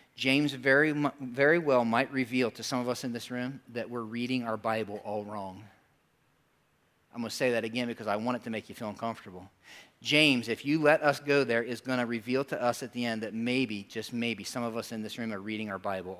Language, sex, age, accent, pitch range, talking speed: English, male, 40-59, American, 120-160 Hz, 240 wpm